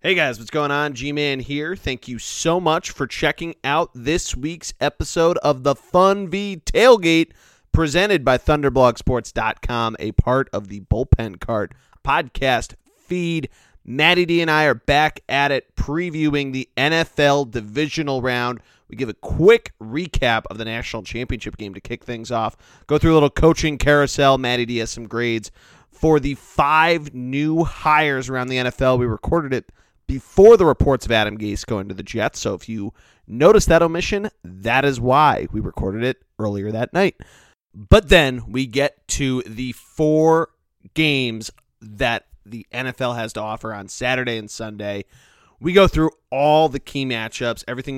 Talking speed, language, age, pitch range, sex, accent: 165 wpm, English, 30-49, 110-155 Hz, male, American